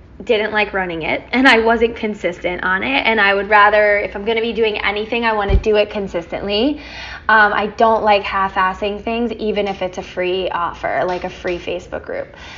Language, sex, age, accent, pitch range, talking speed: English, female, 10-29, American, 195-235 Hz, 210 wpm